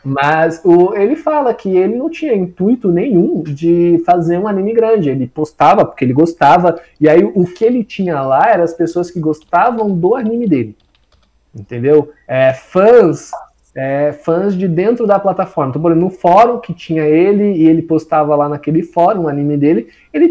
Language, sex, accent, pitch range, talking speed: Portuguese, male, Brazilian, 140-195 Hz, 185 wpm